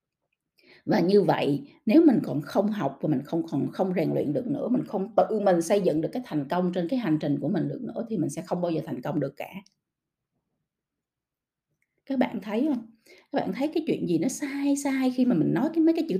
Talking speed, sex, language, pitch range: 250 wpm, female, Vietnamese, 185-275 Hz